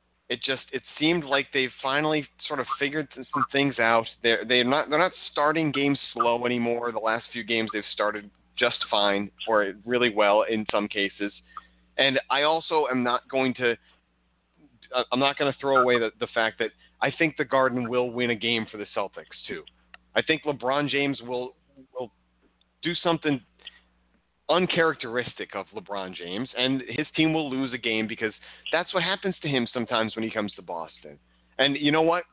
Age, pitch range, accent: 30-49, 110-145 Hz, American